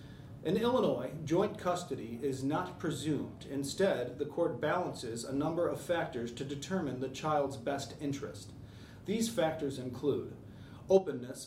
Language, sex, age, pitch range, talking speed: English, male, 30-49, 125-155 Hz, 130 wpm